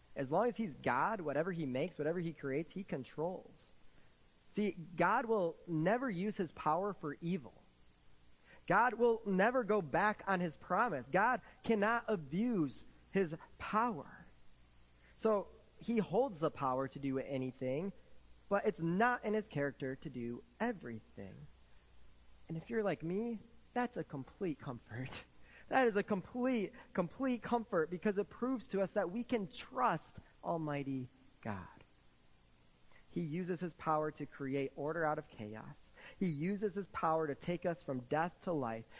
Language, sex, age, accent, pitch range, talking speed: English, male, 30-49, American, 125-195 Hz, 150 wpm